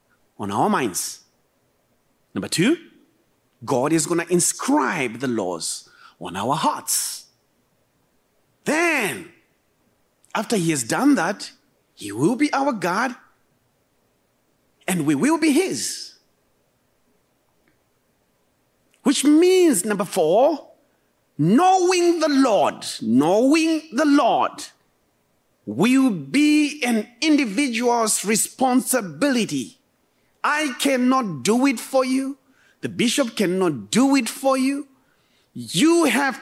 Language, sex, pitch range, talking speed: English, male, 230-310 Hz, 100 wpm